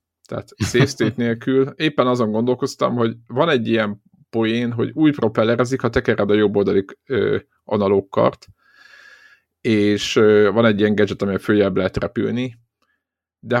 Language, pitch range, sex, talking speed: Hungarian, 105-125 Hz, male, 130 wpm